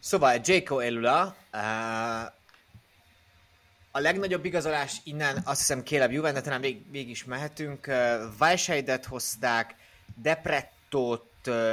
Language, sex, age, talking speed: Hungarian, male, 30-49, 95 wpm